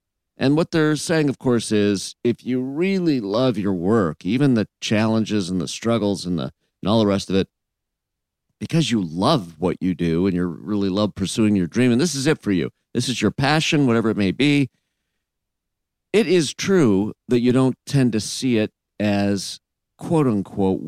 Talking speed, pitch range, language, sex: 190 wpm, 95-125 Hz, English, male